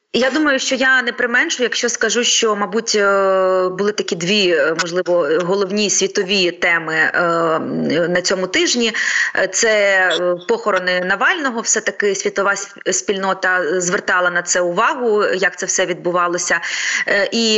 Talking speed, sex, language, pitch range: 120 wpm, female, Ukrainian, 185-230 Hz